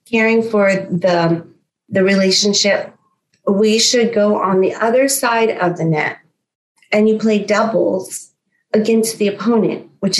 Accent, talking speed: American, 135 wpm